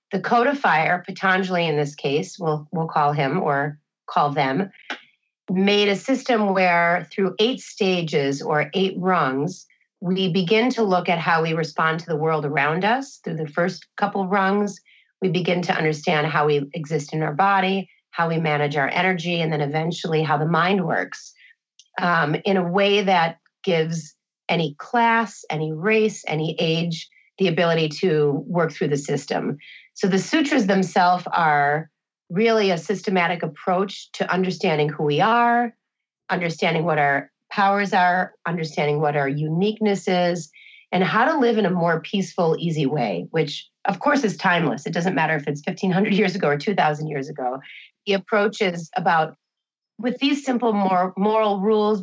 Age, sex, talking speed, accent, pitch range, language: 30-49, female, 165 wpm, American, 155-200 Hz, English